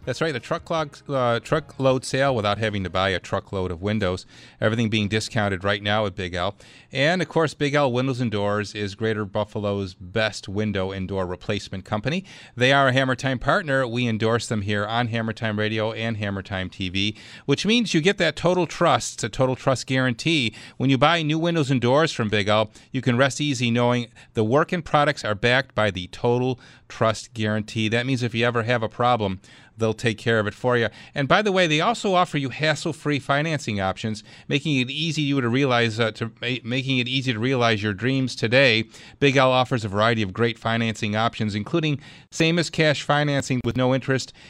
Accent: American